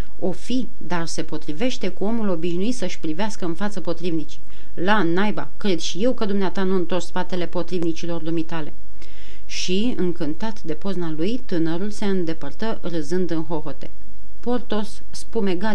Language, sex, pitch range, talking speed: Romanian, female, 170-225 Hz, 145 wpm